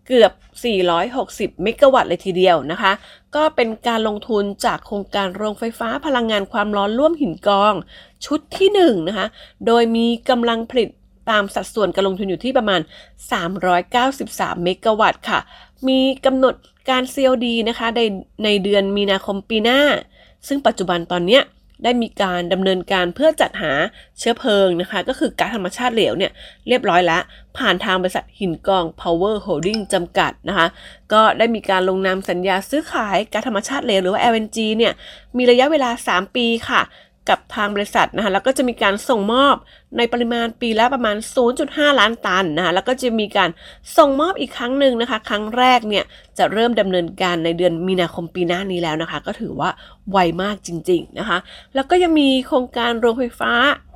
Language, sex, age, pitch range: English, female, 20-39, 190-245 Hz